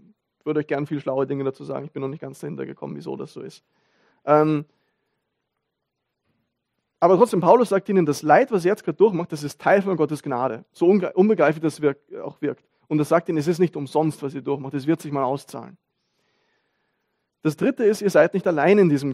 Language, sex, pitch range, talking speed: German, male, 145-180 Hz, 215 wpm